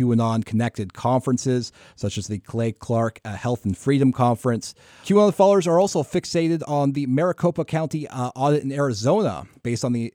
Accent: American